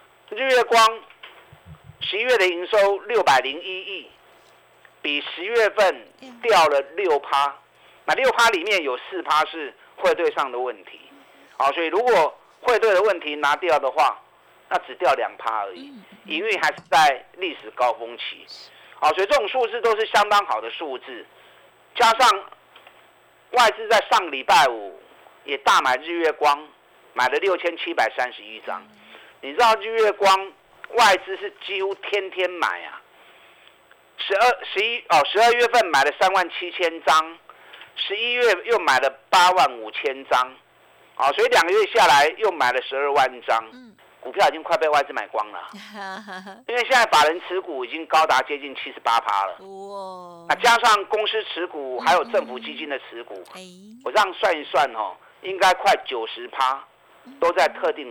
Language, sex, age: Chinese, male, 50-69